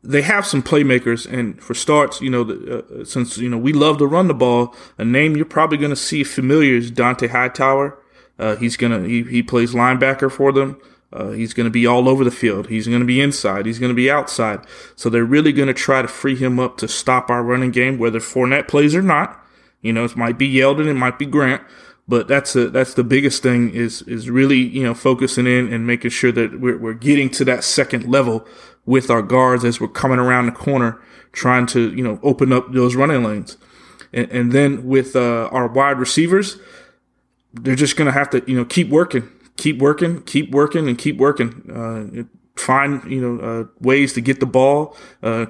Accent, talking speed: American, 220 wpm